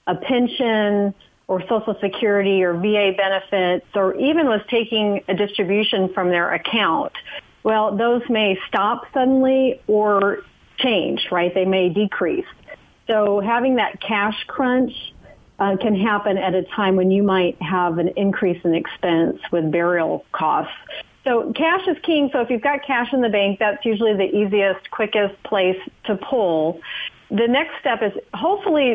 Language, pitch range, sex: English, 190-235 Hz, female